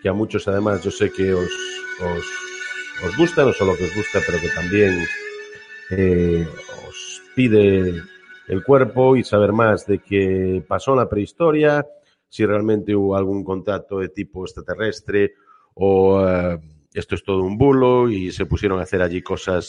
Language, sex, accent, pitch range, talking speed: Spanish, male, Spanish, 95-115 Hz, 170 wpm